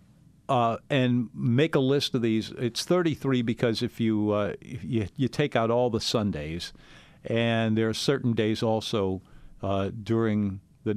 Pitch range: 110-145 Hz